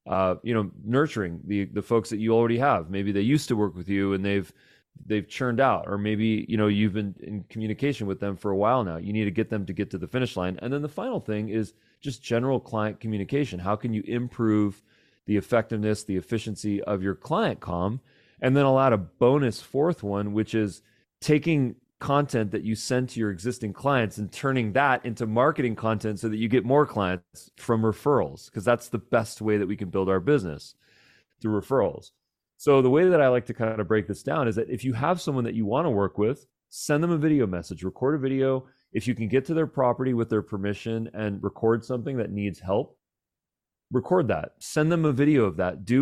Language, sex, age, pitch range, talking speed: English, male, 30-49, 105-130 Hz, 230 wpm